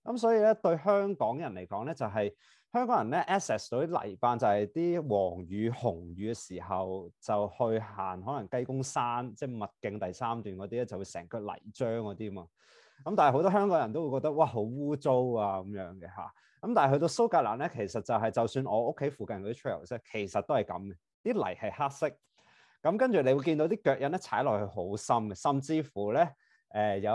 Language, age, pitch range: English, 30-49, 105-155 Hz